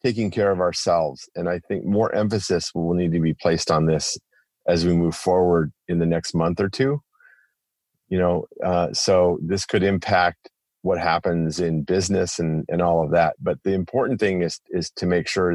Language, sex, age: English, male, 30-49